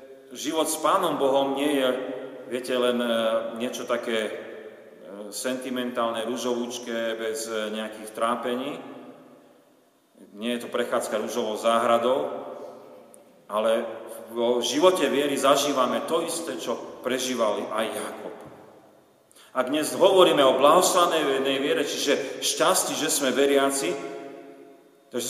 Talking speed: 105 wpm